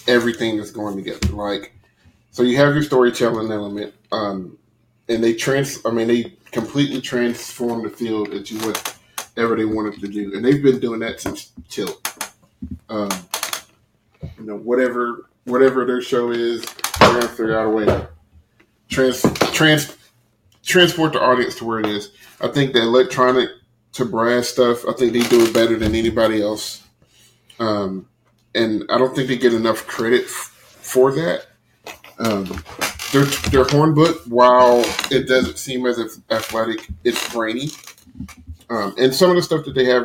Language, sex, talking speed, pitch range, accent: English, male, 160 wpm, 110-130 Hz, American